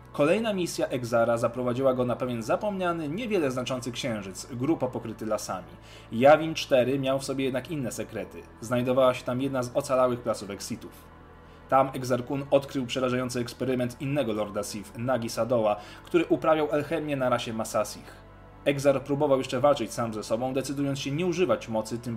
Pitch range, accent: 110-145 Hz, native